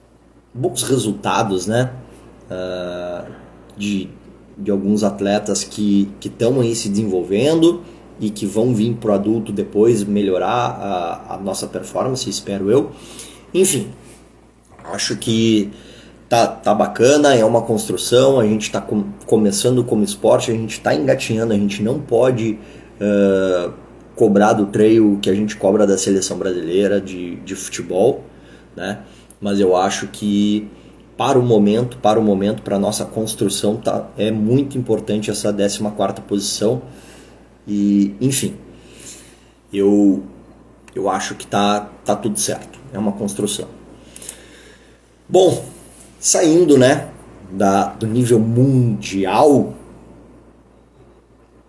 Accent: Brazilian